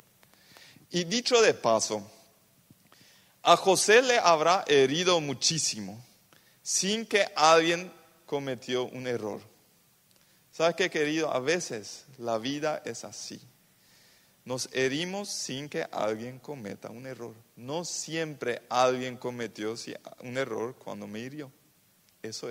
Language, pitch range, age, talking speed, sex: Spanish, 130-195 Hz, 40-59, 115 wpm, male